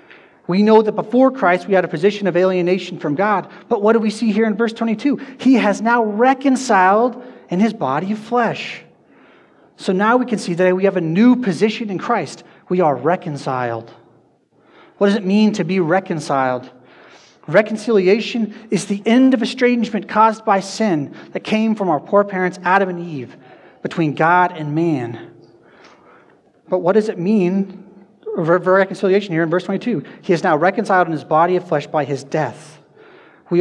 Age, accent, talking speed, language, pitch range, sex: 30-49, American, 175 wpm, English, 155-210 Hz, male